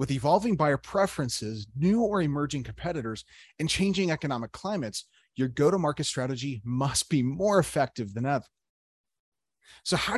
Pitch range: 110-160 Hz